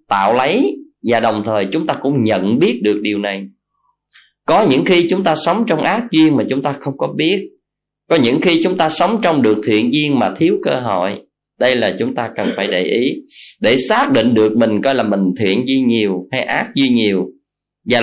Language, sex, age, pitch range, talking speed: Vietnamese, male, 20-39, 105-155 Hz, 220 wpm